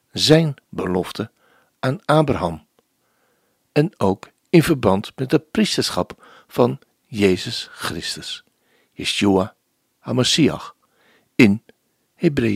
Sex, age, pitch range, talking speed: male, 60-79, 105-155 Hz, 85 wpm